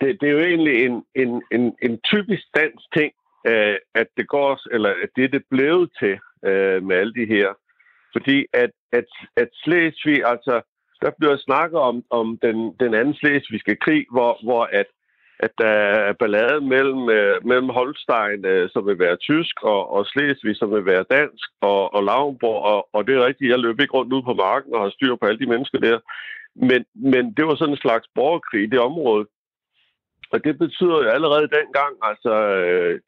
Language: Danish